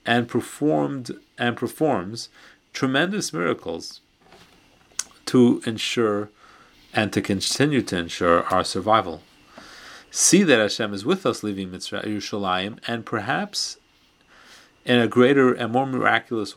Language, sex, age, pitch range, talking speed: English, male, 40-59, 95-115 Hz, 110 wpm